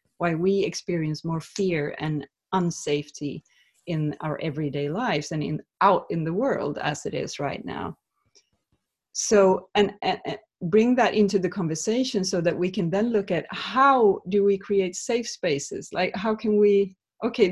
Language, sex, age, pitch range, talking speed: English, female, 30-49, 155-210 Hz, 165 wpm